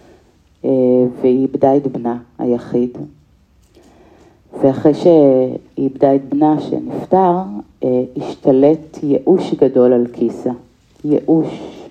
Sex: female